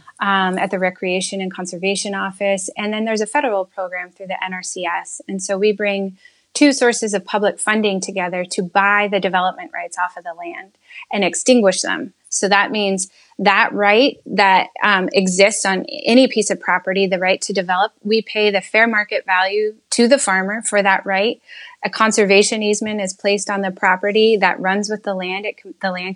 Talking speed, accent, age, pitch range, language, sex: 195 wpm, American, 20-39, 185-215 Hz, English, female